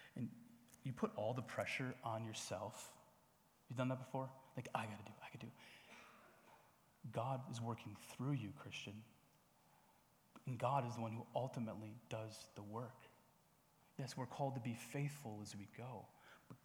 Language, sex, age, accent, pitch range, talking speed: English, male, 30-49, American, 115-145 Hz, 160 wpm